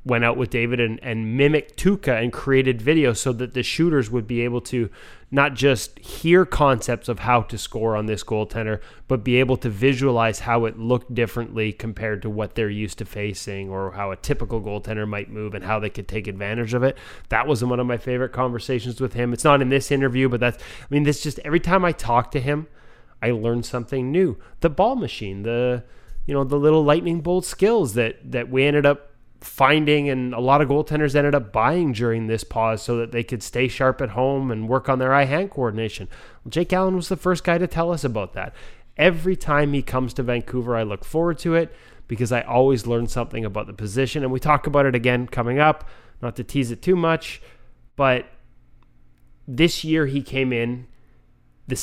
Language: English